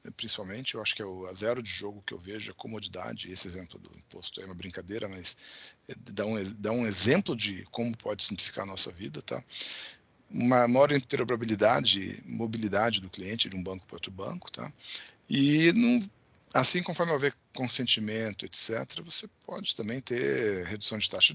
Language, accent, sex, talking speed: Portuguese, Brazilian, male, 175 wpm